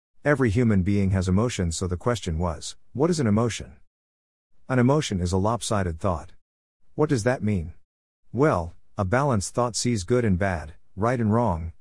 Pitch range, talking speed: 90-115 Hz, 175 wpm